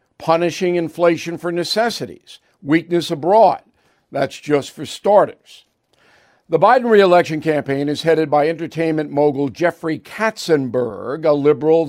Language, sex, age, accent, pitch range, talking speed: English, male, 60-79, American, 145-180 Hz, 115 wpm